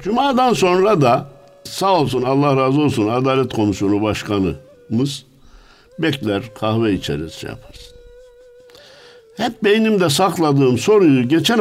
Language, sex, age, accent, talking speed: Turkish, male, 60-79, native, 110 wpm